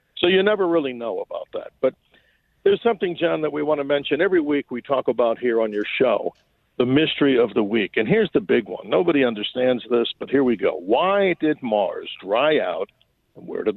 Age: 50-69